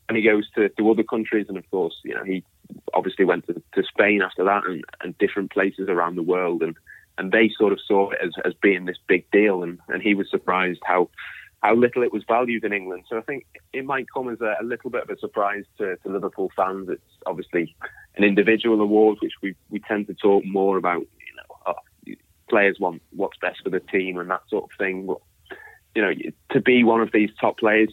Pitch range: 95-115 Hz